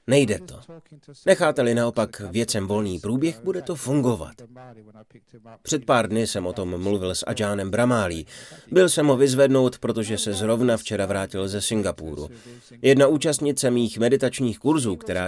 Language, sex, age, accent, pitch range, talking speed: Czech, male, 30-49, native, 105-135 Hz, 145 wpm